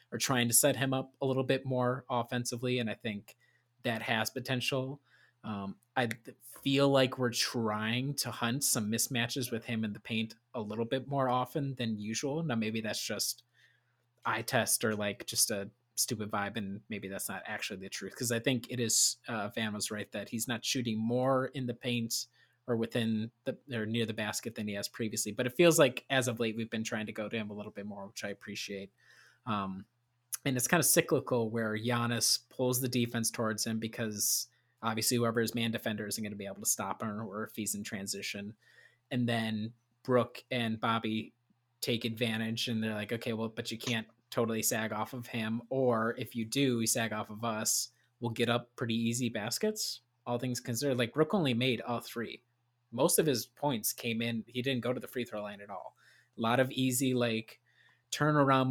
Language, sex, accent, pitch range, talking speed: English, male, American, 110-125 Hz, 210 wpm